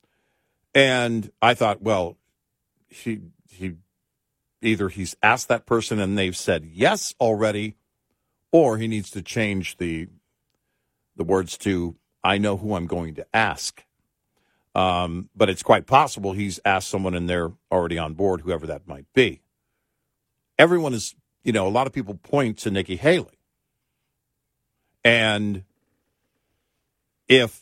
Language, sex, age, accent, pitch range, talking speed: English, male, 50-69, American, 95-120 Hz, 135 wpm